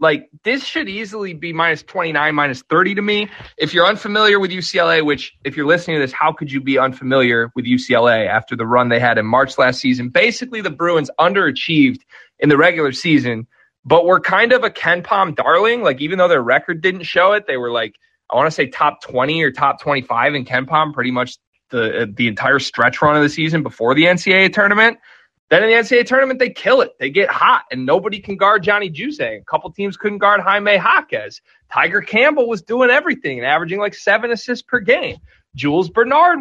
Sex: male